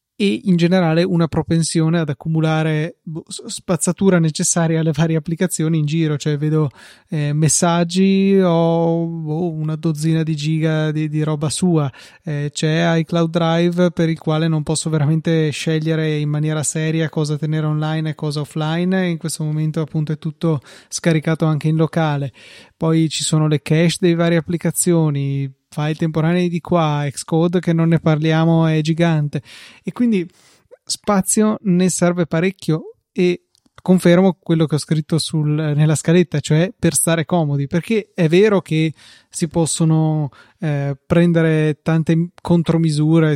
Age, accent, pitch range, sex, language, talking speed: 20-39, native, 155-170 Hz, male, Italian, 140 wpm